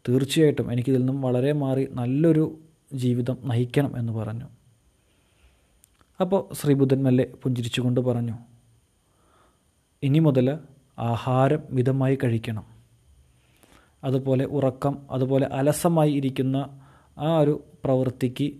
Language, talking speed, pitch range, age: Malayalam, 90 wpm, 125-150 Hz, 30-49